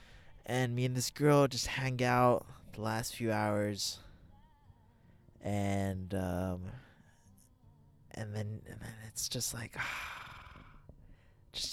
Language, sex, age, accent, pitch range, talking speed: English, male, 20-39, American, 95-120 Hz, 120 wpm